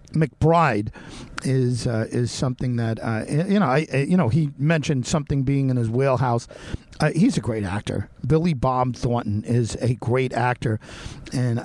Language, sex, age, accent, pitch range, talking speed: English, male, 50-69, American, 115-140 Hz, 165 wpm